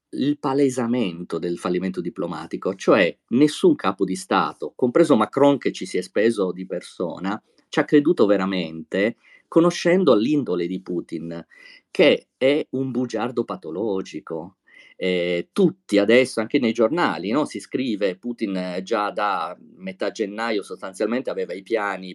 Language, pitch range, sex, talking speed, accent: Italian, 95-135 Hz, male, 140 wpm, native